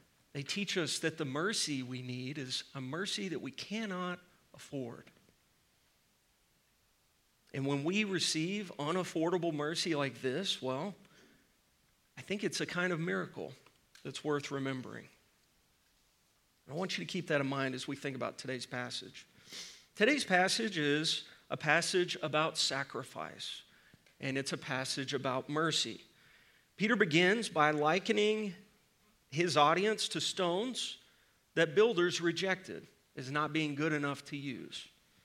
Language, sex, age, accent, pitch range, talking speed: English, male, 40-59, American, 140-180 Hz, 135 wpm